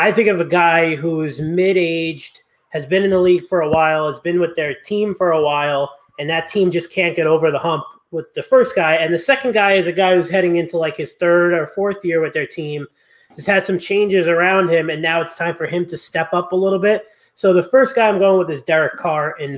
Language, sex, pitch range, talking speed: English, male, 155-185 Hz, 255 wpm